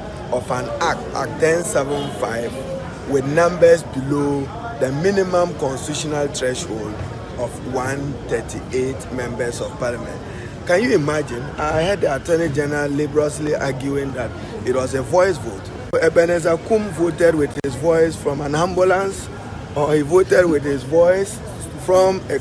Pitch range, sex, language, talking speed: 130-175 Hz, male, English, 135 wpm